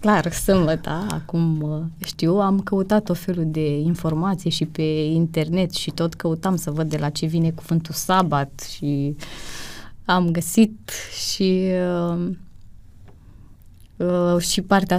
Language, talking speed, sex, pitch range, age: Romanian, 125 wpm, female, 160-190 Hz, 20-39